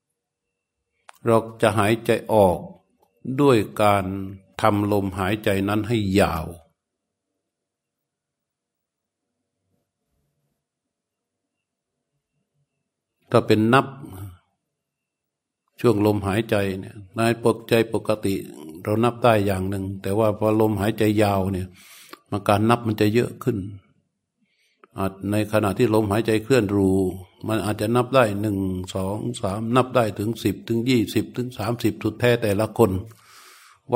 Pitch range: 100-120 Hz